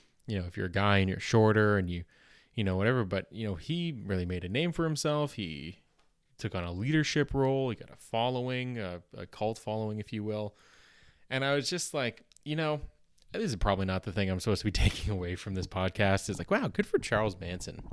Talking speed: 235 wpm